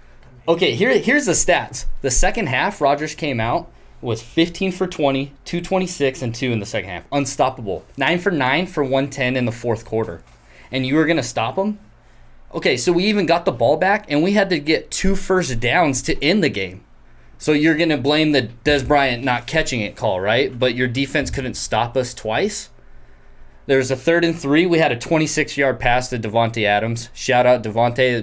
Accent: American